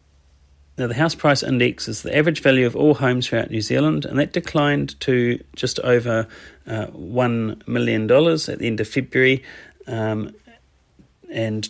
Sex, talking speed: male, 160 wpm